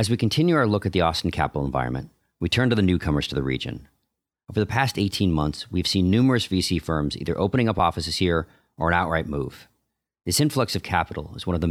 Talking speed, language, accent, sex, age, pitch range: 230 wpm, English, American, male, 40-59, 80-100 Hz